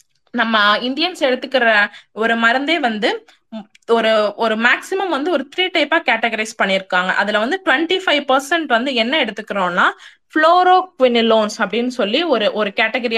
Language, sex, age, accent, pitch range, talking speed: Tamil, female, 20-39, native, 210-290 Hz, 130 wpm